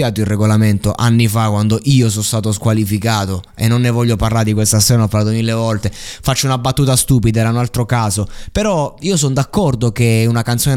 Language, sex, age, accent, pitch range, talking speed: Italian, male, 20-39, native, 110-140 Hz, 200 wpm